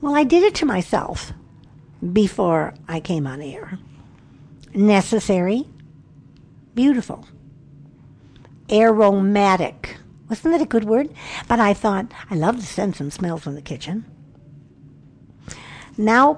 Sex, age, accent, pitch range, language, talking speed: female, 60-79, American, 155-245 Hz, English, 115 wpm